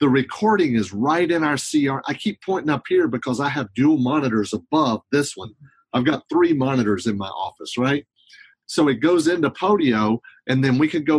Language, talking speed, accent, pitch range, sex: English, 205 wpm, American, 125-160 Hz, male